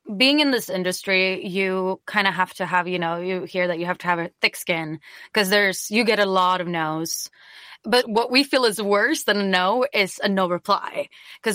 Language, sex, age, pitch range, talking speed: English, female, 20-39, 180-215 Hz, 230 wpm